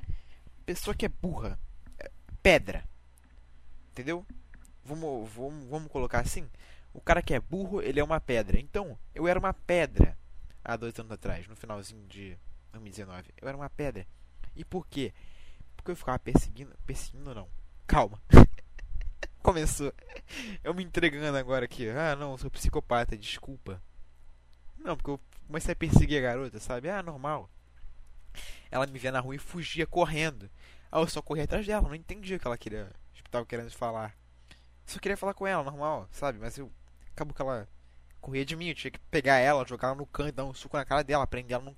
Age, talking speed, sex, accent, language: 20-39, 180 wpm, male, Brazilian, Portuguese